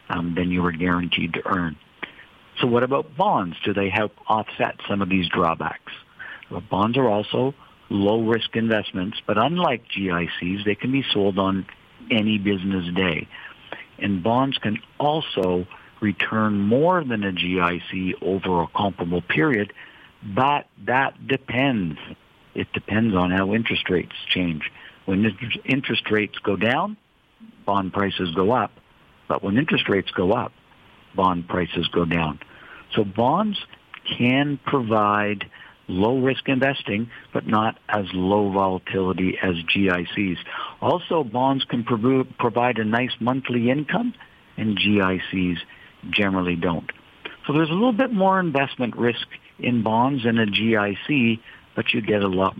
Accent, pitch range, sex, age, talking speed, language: American, 95-125 Hz, male, 60-79, 140 wpm, English